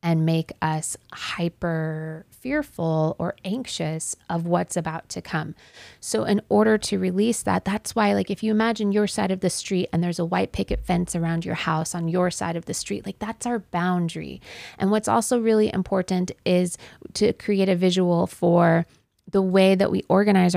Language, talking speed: English, 185 wpm